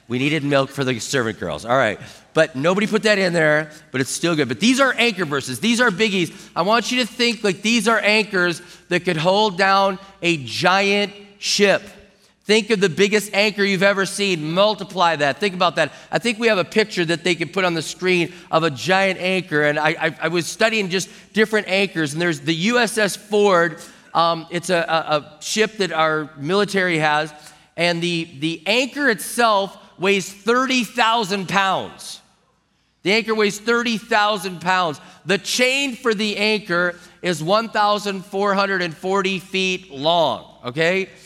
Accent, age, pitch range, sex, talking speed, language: American, 40-59, 170-205 Hz, male, 175 wpm, English